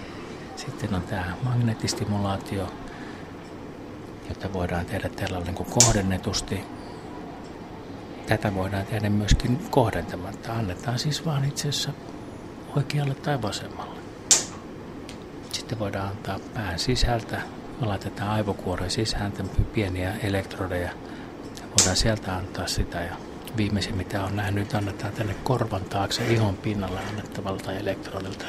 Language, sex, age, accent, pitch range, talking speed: Finnish, male, 50-69, native, 95-110 Hz, 105 wpm